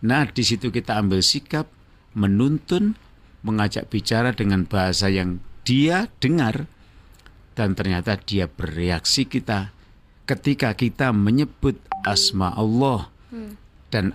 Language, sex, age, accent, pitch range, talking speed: Indonesian, male, 50-69, native, 95-135 Hz, 105 wpm